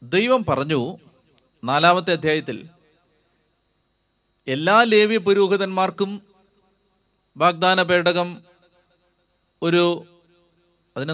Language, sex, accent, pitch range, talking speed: Malayalam, male, native, 155-190 Hz, 60 wpm